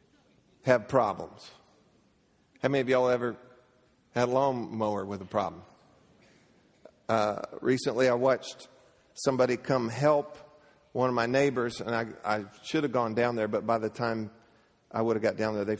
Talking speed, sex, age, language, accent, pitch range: 165 wpm, male, 50-69, English, American, 105-135 Hz